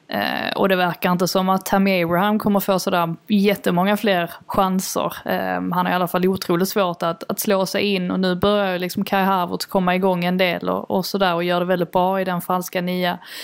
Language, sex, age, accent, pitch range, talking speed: Swedish, female, 20-39, native, 180-215 Hz, 225 wpm